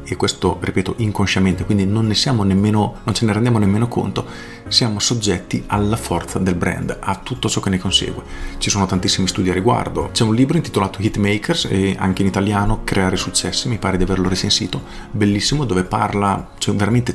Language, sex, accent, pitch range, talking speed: Italian, male, native, 95-115 Hz, 195 wpm